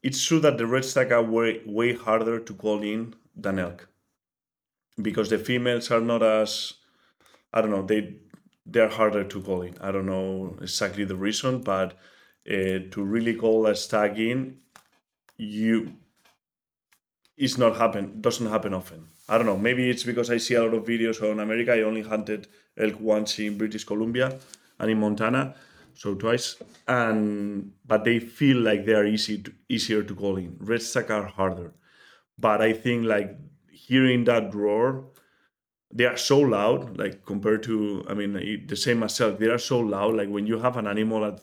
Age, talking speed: 30-49, 180 wpm